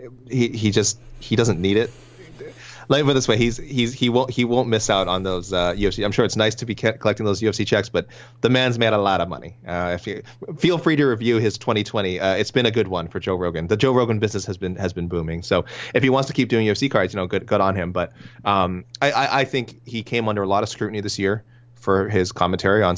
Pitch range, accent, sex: 100-120 Hz, American, male